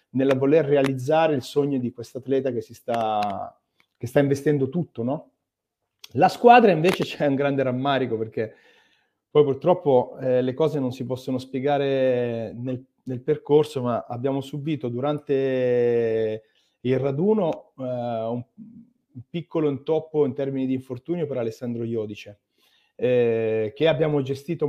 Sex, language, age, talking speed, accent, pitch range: male, Italian, 30-49, 140 wpm, native, 130-160 Hz